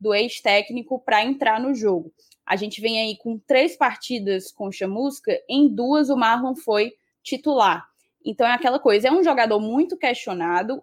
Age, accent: 10-29, Brazilian